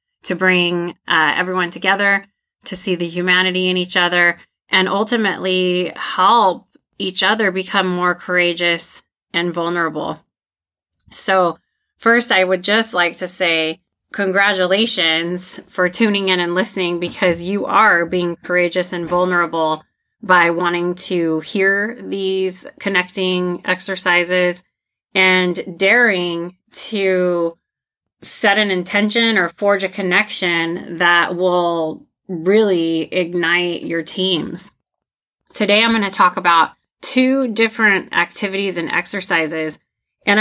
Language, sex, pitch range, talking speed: English, female, 175-200 Hz, 115 wpm